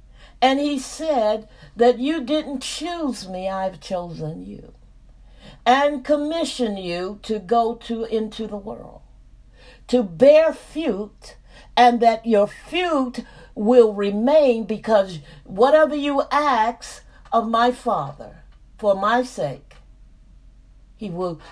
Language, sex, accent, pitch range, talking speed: English, female, American, 195-260 Hz, 115 wpm